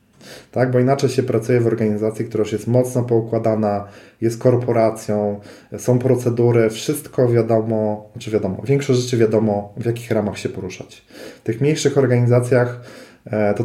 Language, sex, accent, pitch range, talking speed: Polish, male, native, 105-120 Hz, 145 wpm